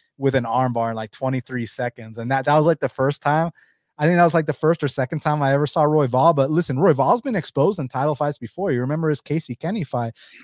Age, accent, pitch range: 30-49, American, 130-170 Hz